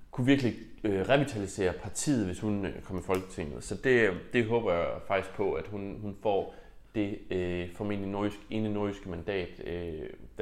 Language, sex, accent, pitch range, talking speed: Danish, male, native, 95-110 Hz, 160 wpm